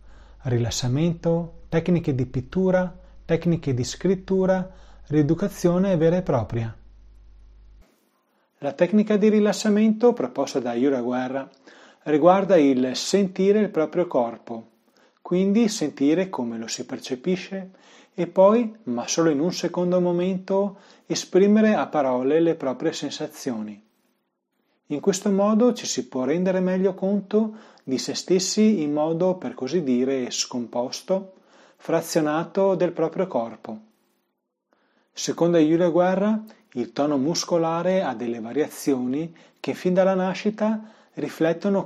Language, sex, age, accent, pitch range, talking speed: Italian, male, 30-49, native, 130-190 Hz, 115 wpm